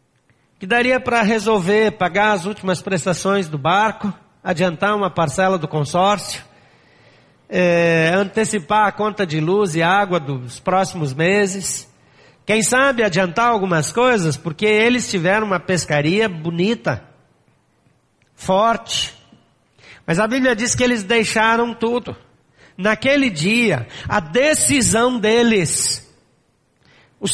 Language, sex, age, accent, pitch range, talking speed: Portuguese, male, 60-79, Brazilian, 165-230 Hz, 110 wpm